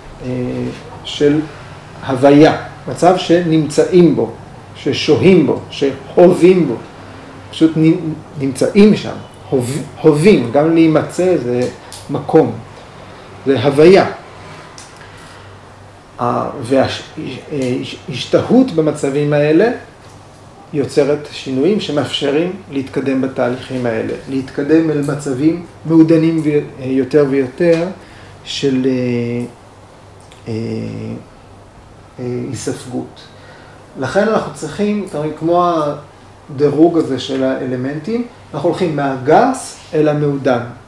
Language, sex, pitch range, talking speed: Hebrew, male, 125-160 Hz, 75 wpm